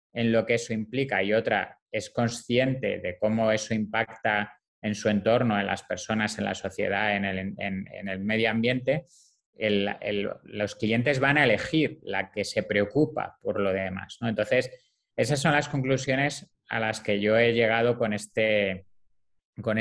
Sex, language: male, Spanish